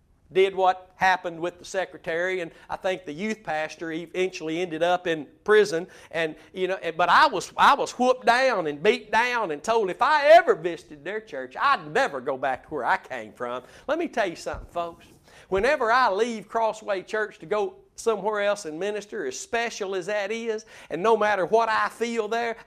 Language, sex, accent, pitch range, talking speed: English, male, American, 170-235 Hz, 200 wpm